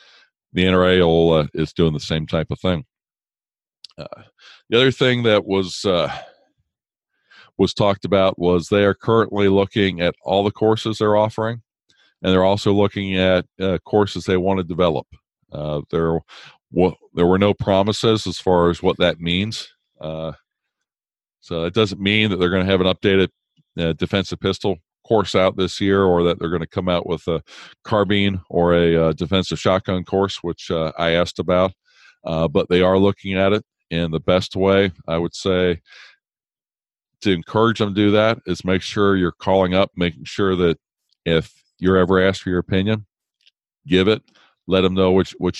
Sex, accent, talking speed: male, American, 180 wpm